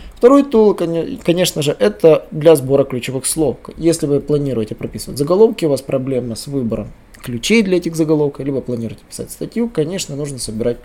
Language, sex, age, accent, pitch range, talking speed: Russian, male, 20-39, native, 135-185 Hz, 165 wpm